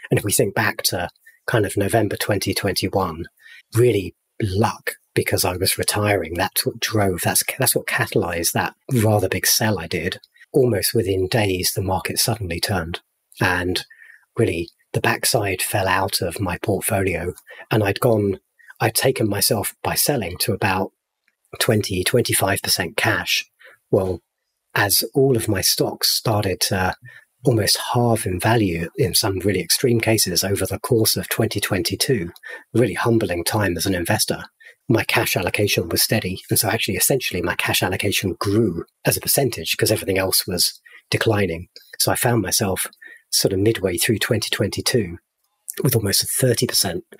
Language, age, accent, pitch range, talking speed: English, 40-59, British, 95-115 Hz, 150 wpm